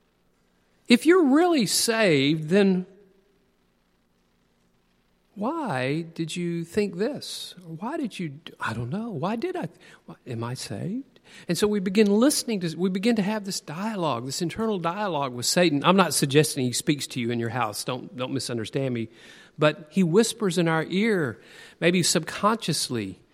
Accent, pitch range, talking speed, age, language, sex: American, 140-210 Hz, 155 wpm, 50-69, English, male